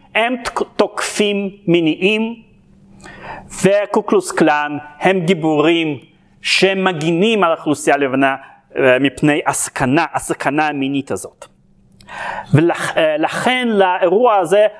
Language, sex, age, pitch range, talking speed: Hebrew, male, 40-59, 160-230 Hz, 80 wpm